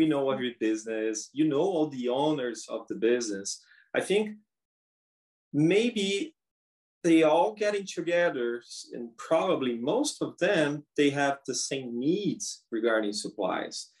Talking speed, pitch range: 145 wpm, 115-165 Hz